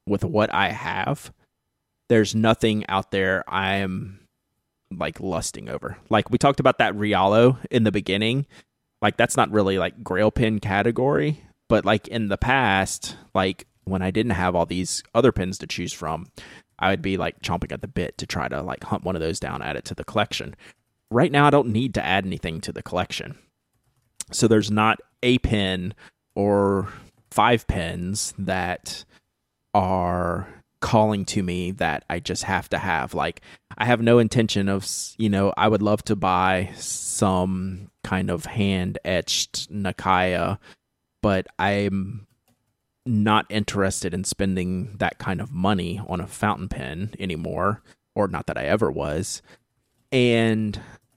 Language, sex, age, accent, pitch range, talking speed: English, male, 30-49, American, 95-110 Hz, 165 wpm